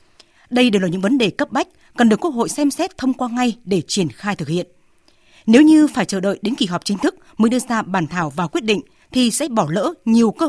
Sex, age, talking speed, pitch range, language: female, 20-39, 265 wpm, 190-265 Hz, Vietnamese